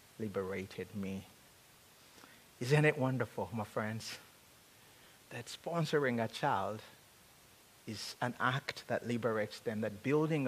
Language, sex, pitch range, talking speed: English, male, 105-130 Hz, 110 wpm